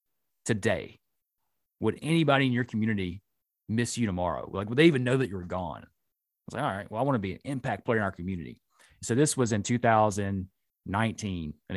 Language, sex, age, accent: English, male, 30-49, American